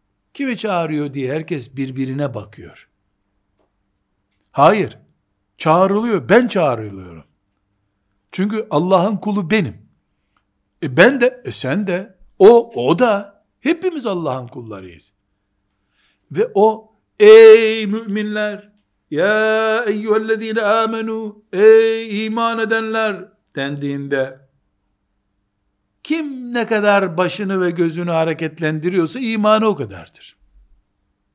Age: 60-79